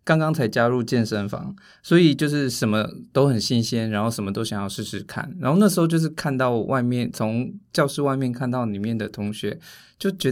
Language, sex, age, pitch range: Chinese, male, 20-39, 110-150 Hz